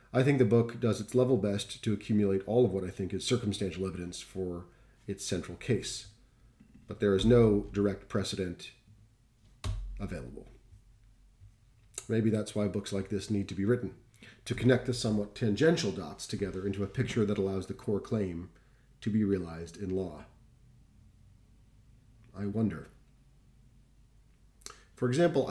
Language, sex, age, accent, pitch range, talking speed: English, male, 40-59, American, 95-120 Hz, 150 wpm